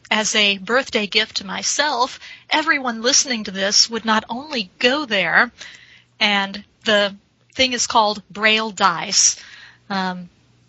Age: 30-49